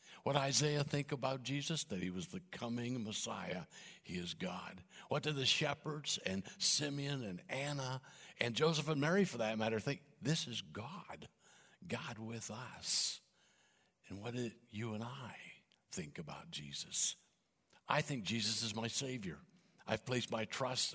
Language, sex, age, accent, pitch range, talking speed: English, male, 60-79, American, 110-140 Hz, 160 wpm